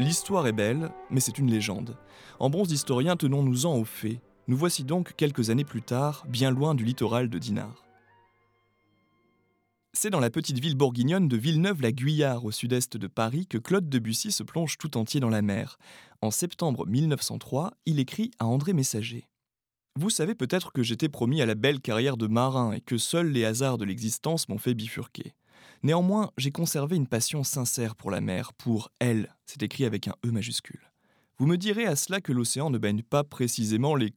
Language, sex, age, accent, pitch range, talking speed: French, male, 20-39, French, 110-145 Hz, 190 wpm